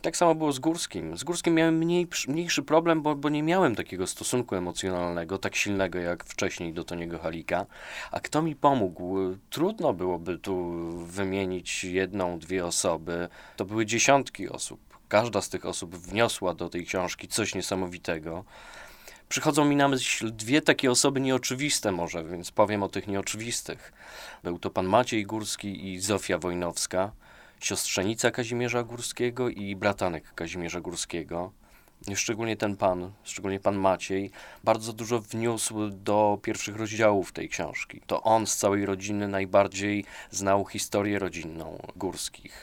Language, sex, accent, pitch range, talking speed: Polish, male, native, 95-115 Hz, 145 wpm